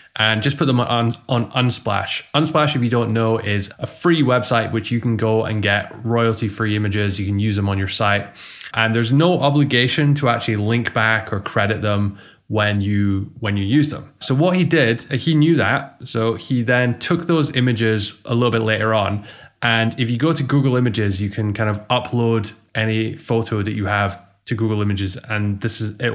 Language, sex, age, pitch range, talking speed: English, male, 20-39, 105-125 Hz, 210 wpm